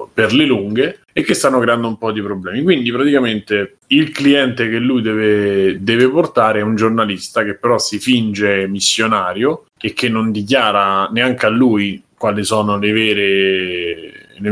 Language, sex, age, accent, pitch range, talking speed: Italian, male, 30-49, native, 100-130 Hz, 160 wpm